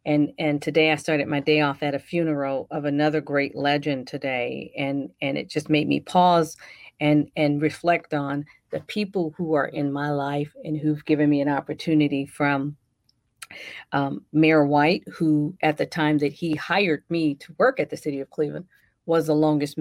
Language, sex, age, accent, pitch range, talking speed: English, female, 40-59, American, 145-160 Hz, 190 wpm